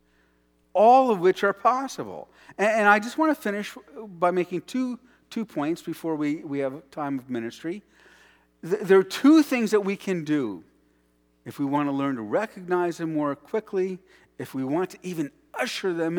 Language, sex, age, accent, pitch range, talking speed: English, male, 50-69, American, 135-205 Hz, 170 wpm